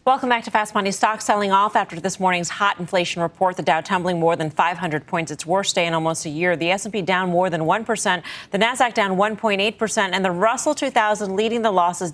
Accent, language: American, English